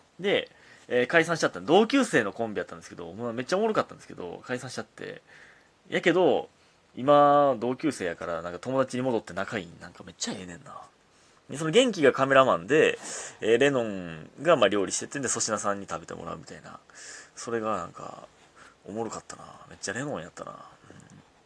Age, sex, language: 30-49, male, Japanese